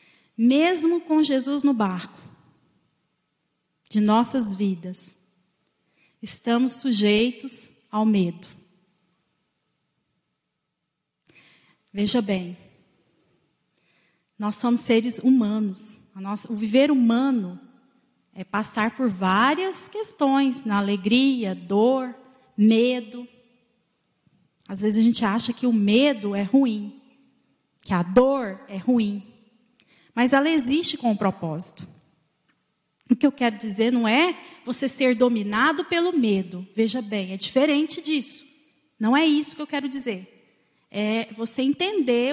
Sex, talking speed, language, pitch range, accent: female, 115 wpm, Portuguese, 205-280 Hz, Brazilian